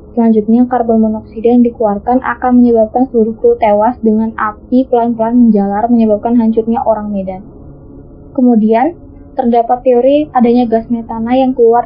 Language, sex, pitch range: Indonesian, female, 220-245 Hz